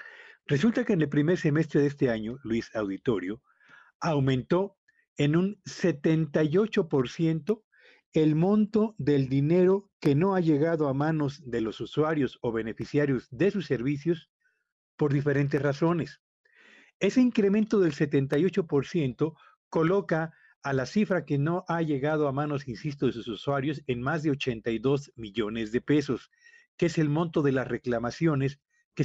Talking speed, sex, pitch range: 145 wpm, male, 135-180 Hz